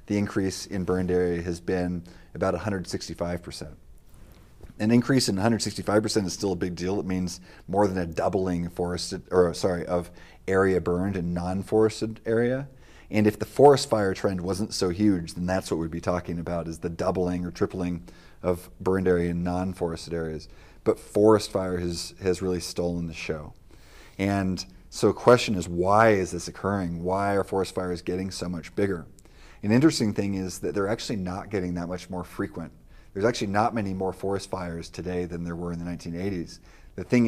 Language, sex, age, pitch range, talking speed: English, male, 30-49, 85-100 Hz, 180 wpm